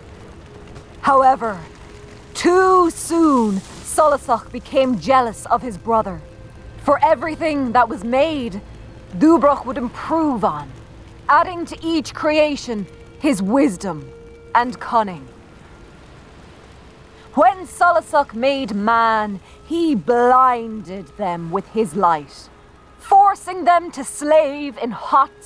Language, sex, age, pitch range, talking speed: English, female, 20-39, 195-320 Hz, 100 wpm